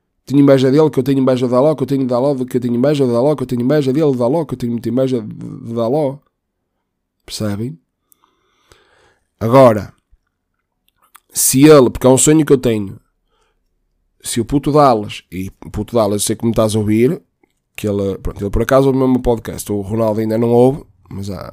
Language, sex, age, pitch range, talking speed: Portuguese, male, 20-39, 110-135 Hz, 210 wpm